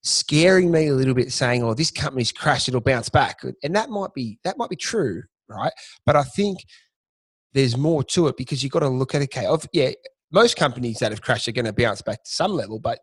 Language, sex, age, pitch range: English, male, 30-49, 120-145 Hz